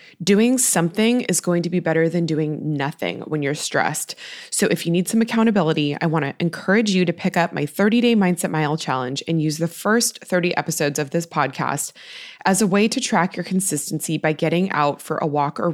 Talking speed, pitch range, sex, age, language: 215 wpm, 160-210 Hz, female, 20-39, English